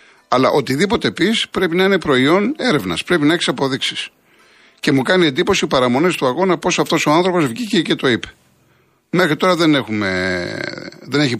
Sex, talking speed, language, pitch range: male, 175 wpm, Greek, 120-180 Hz